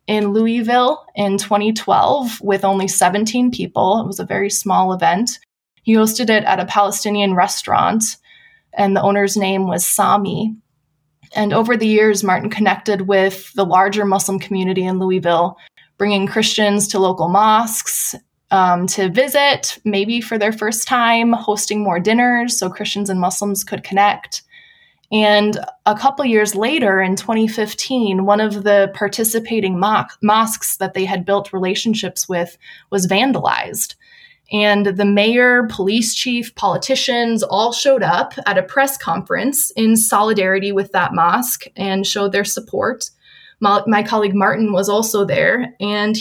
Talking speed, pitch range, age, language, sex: 145 wpm, 195-230 Hz, 20-39, English, female